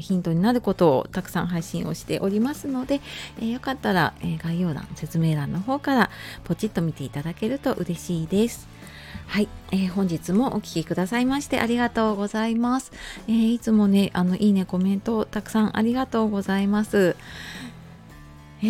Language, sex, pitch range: Japanese, female, 170-225 Hz